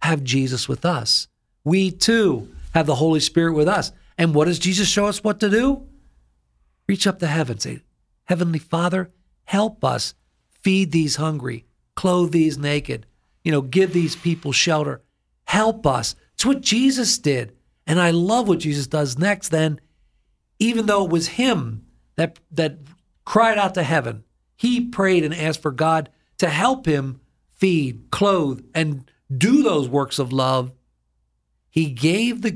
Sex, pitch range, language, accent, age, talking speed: male, 135-180 Hz, English, American, 50-69, 160 wpm